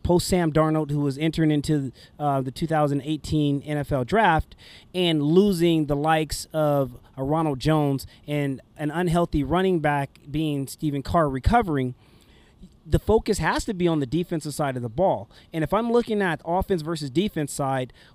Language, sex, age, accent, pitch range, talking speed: English, male, 30-49, American, 150-195 Hz, 165 wpm